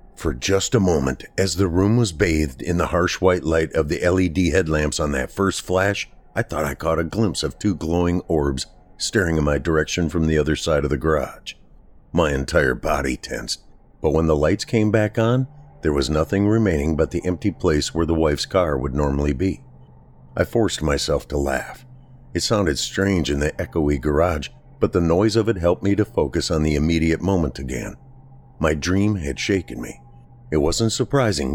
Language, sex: English, male